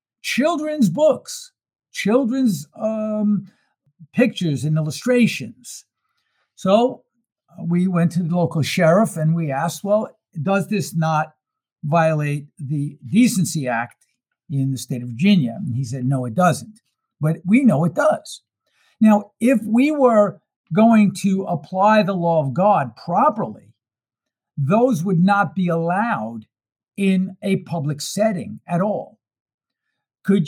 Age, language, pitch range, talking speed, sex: 60-79, English, 155-210 Hz, 130 wpm, male